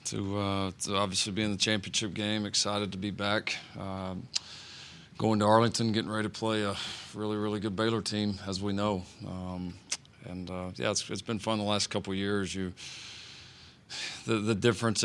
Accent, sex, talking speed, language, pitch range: American, male, 185 wpm, English, 95-105 Hz